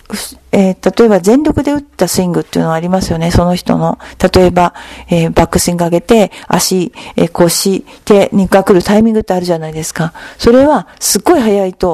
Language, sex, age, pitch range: Japanese, female, 50-69, 175-230 Hz